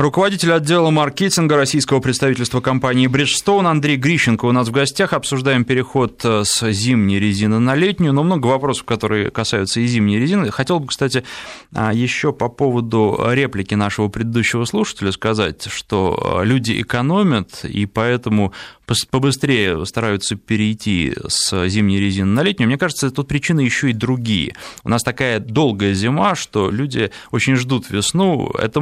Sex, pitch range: male, 105-145 Hz